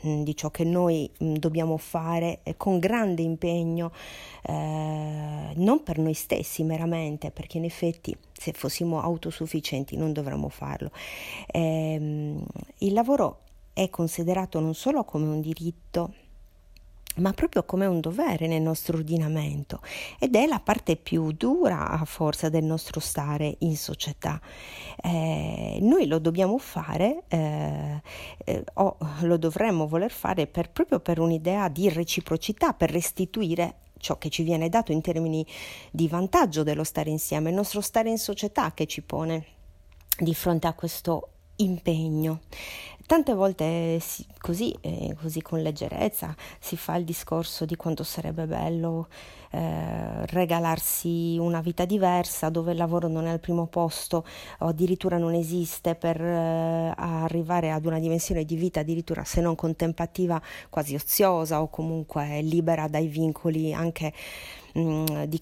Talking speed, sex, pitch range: 140 wpm, female, 155-175 Hz